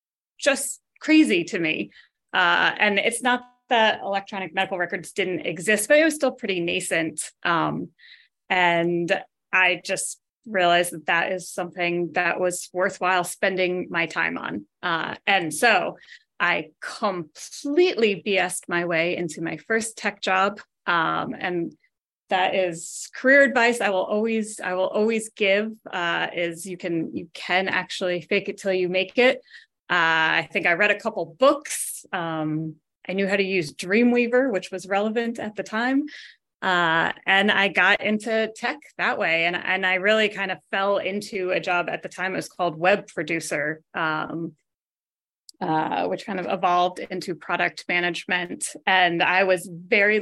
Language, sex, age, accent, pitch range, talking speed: English, female, 30-49, American, 175-215 Hz, 160 wpm